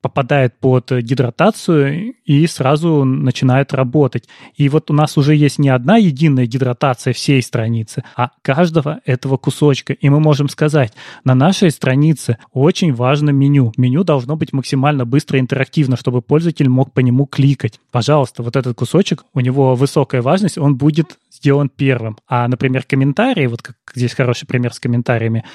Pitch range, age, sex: 130-160 Hz, 20-39, male